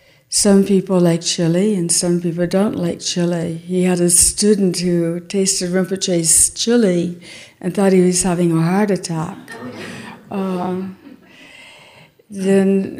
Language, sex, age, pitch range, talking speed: English, female, 60-79, 175-205 Hz, 130 wpm